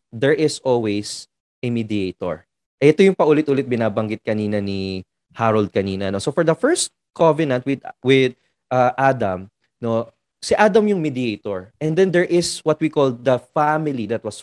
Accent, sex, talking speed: Filipino, male, 160 wpm